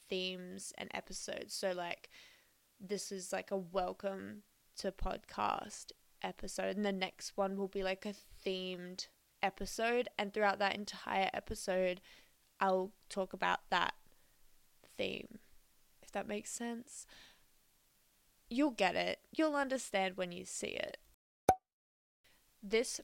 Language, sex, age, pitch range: English, female, 20-39, 185-225 Hz